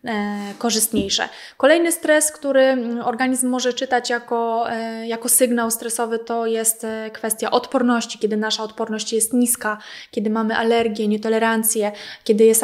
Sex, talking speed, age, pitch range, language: female, 125 wpm, 20-39, 220-235 Hz, Polish